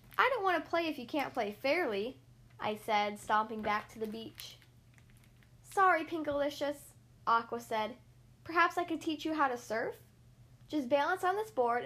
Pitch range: 195-320 Hz